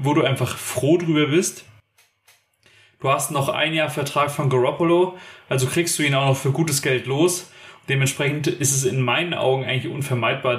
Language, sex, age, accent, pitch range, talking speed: German, male, 30-49, German, 125-145 Hz, 180 wpm